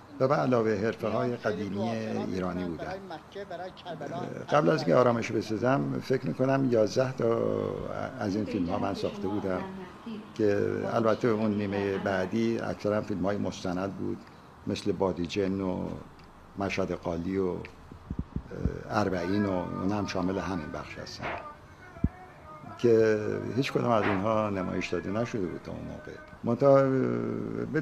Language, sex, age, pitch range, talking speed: Persian, male, 50-69, 95-115 Hz, 125 wpm